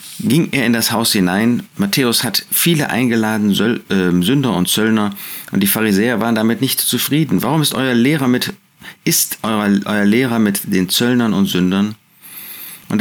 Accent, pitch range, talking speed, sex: German, 90-130 Hz, 160 wpm, male